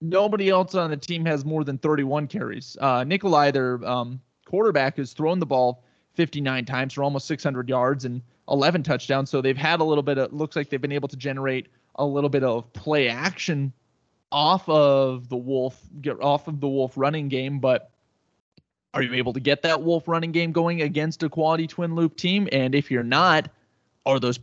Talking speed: 200 wpm